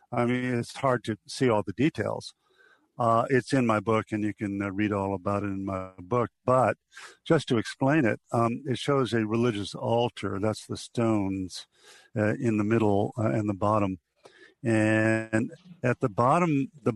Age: 50-69